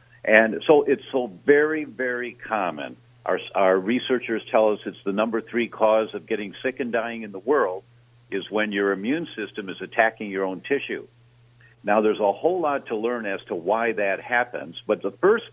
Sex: male